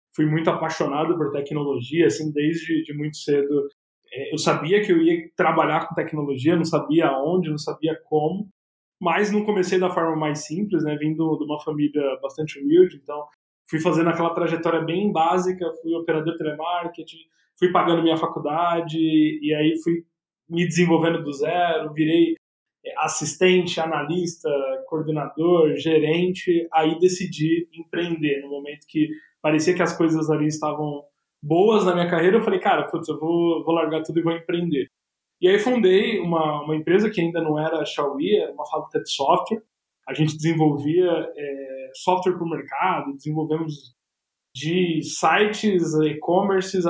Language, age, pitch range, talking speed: Portuguese, 20-39, 155-180 Hz, 155 wpm